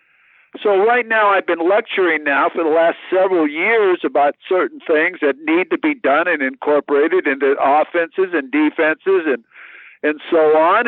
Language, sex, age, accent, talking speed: English, male, 60-79, American, 165 wpm